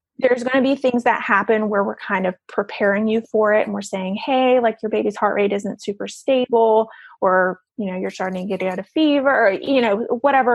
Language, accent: English, American